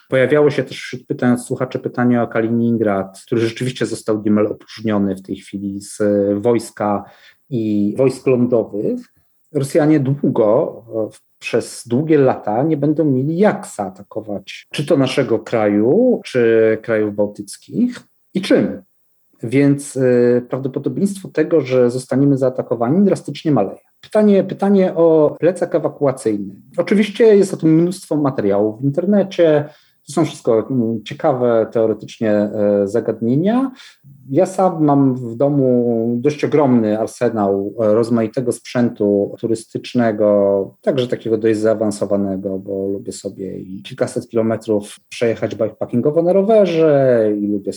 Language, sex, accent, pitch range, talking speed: Polish, male, native, 110-150 Hz, 115 wpm